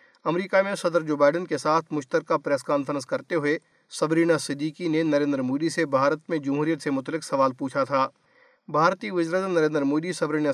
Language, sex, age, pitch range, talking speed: Urdu, male, 50-69, 145-180 Hz, 180 wpm